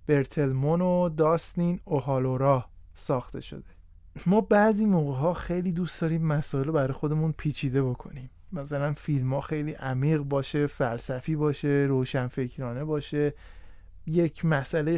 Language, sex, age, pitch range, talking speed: Persian, male, 20-39, 140-185 Hz, 110 wpm